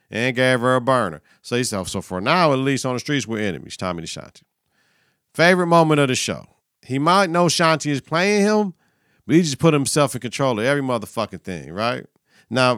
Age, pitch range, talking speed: 50-69, 120-170 Hz, 215 wpm